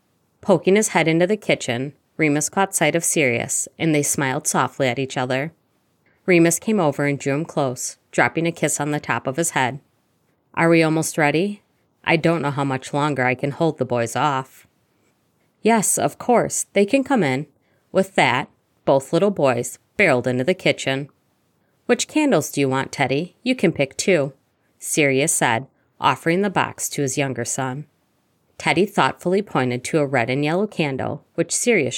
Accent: American